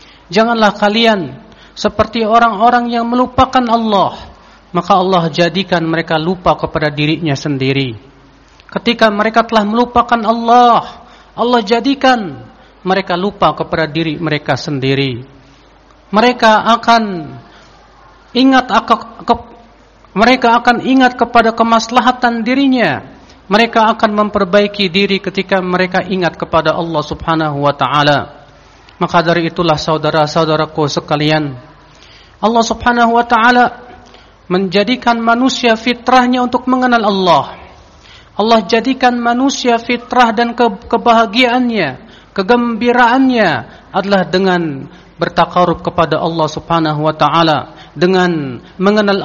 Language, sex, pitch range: Indonesian, male, 165-235 Hz